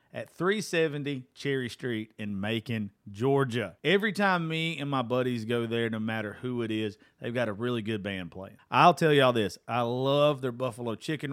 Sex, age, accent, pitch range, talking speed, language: male, 40-59, American, 115-150 Hz, 190 wpm, English